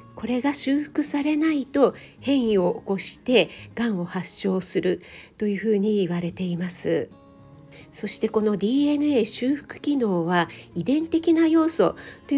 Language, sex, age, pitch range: Japanese, female, 50-69, 180-250 Hz